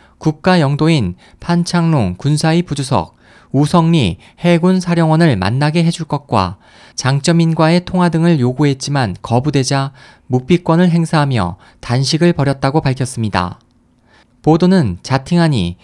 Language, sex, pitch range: Korean, male, 125-165 Hz